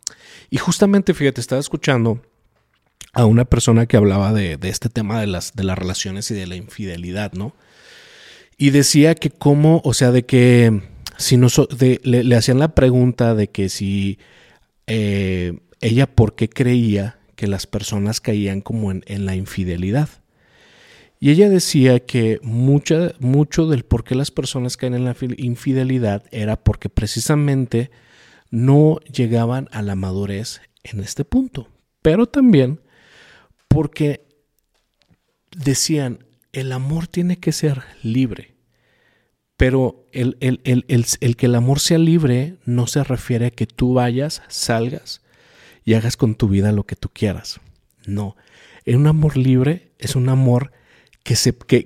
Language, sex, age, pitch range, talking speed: Spanish, male, 40-59, 110-140 Hz, 150 wpm